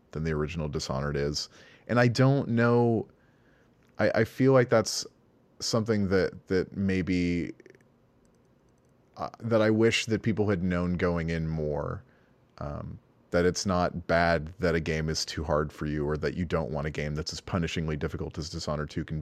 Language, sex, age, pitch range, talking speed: English, male, 30-49, 80-110 Hz, 180 wpm